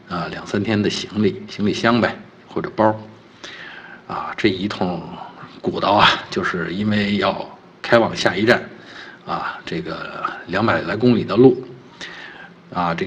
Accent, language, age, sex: native, Chinese, 50-69, male